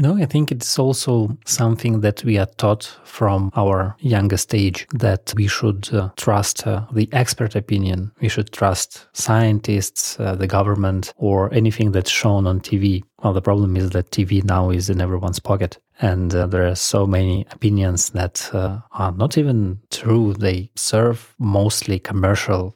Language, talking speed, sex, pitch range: English, 170 wpm, male, 100-120 Hz